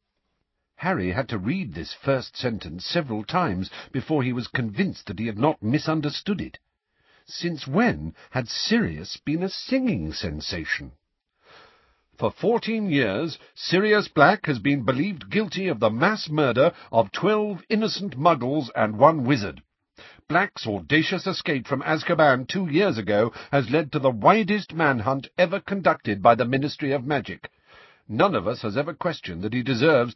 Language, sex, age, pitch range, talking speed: English, male, 50-69, 130-180 Hz, 155 wpm